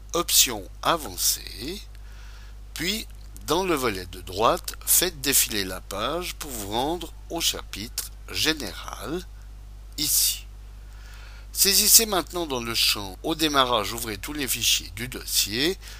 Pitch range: 100-155 Hz